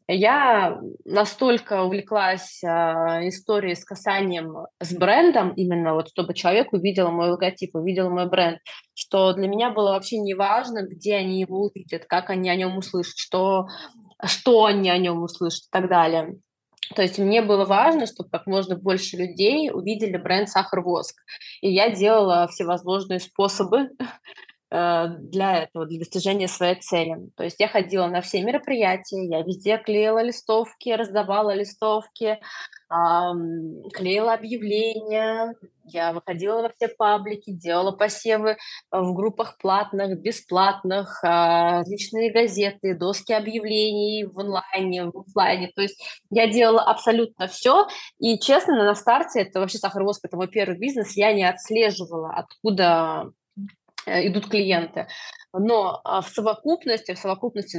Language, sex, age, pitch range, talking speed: Russian, female, 20-39, 180-215 Hz, 135 wpm